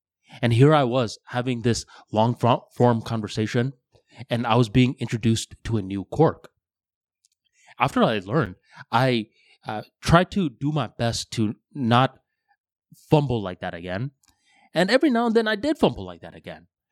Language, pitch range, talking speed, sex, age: English, 105-150 Hz, 155 wpm, male, 20-39